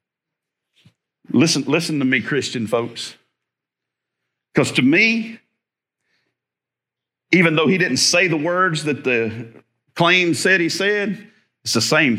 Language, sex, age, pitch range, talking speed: English, male, 50-69, 135-195 Hz, 125 wpm